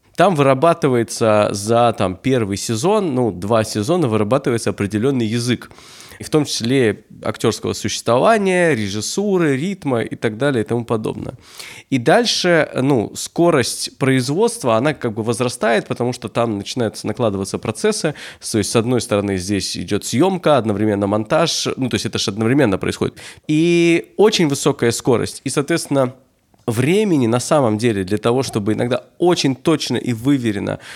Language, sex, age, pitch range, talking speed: Russian, male, 20-39, 115-145 Hz, 145 wpm